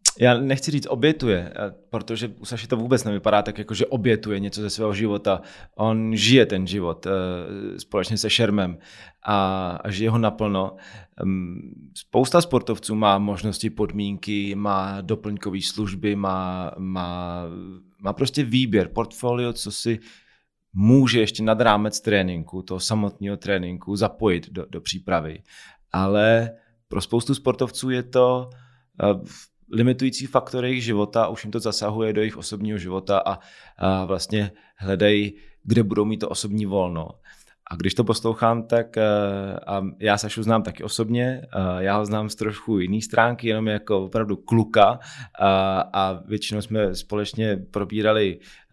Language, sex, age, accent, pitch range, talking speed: Czech, male, 30-49, native, 95-115 Hz, 140 wpm